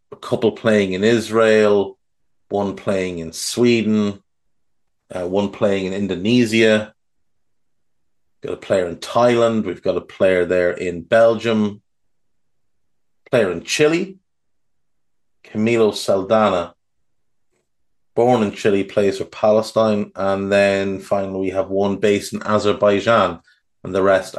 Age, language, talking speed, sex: 30-49, English, 125 wpm, male